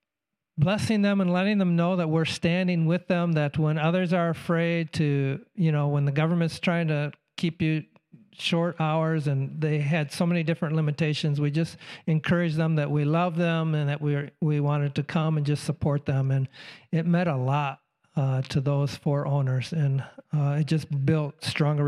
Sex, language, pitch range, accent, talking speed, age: male, English, 145-170 Hz, American, 195 wpm, 50-69